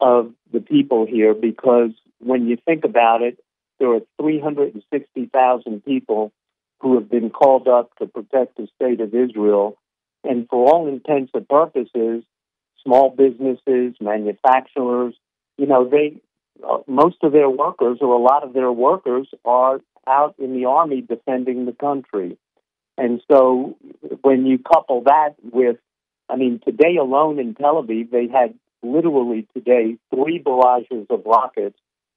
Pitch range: 115-140 Hz